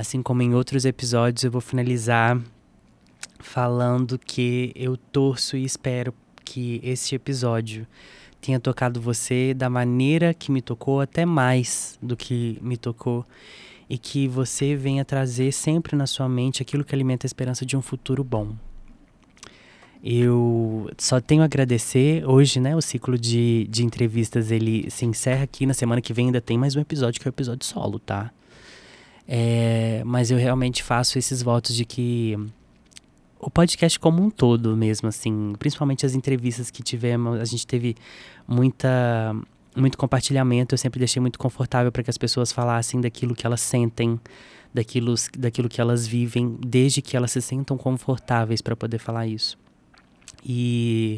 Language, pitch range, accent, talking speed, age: Portuguese, 120-130 Hz, Brazilian, 160 wpm, 20-39